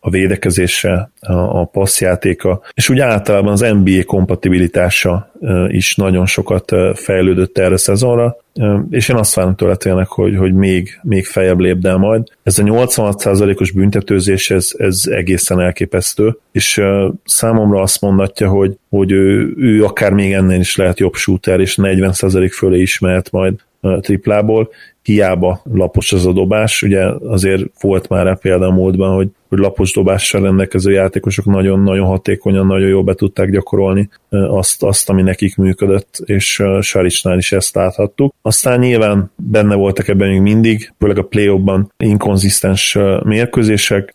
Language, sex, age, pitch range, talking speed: Hungarian, male, 30-49, 95-105 Hz, 145 wpm